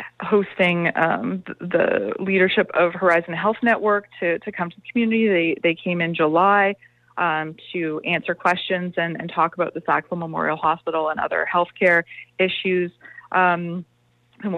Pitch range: 165-200 Hz